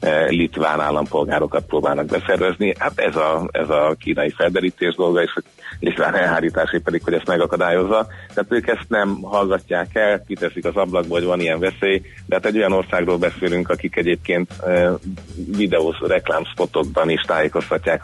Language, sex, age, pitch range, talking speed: Hungarian, male, 30-49, 80-95 Hz, 155 wpm